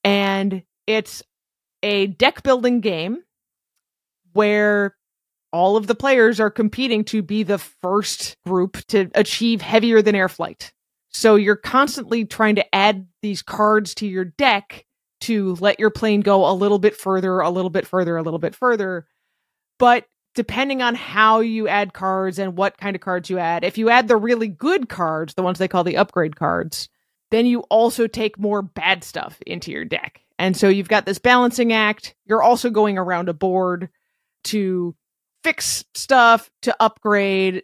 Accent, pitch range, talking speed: American, 190-230 Hz, 165 wpm